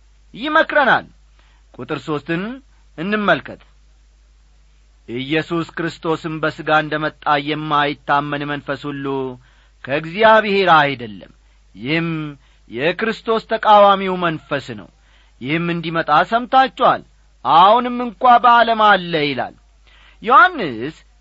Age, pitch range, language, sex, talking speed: 40-59, 140-220 Hz, Amharic, male, 80 wpm